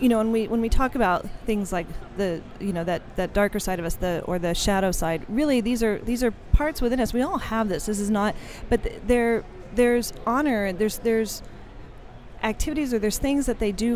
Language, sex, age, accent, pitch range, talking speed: English, female, 40-59, American, 185-240 Hz, 230 wpm